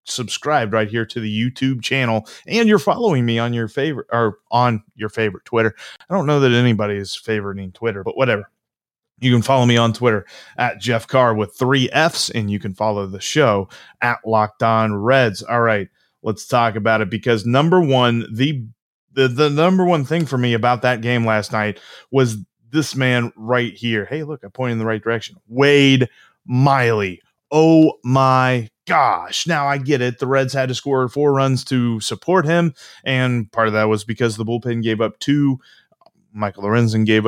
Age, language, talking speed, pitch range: 30-49, English, 190 wpm, 110-140 Hz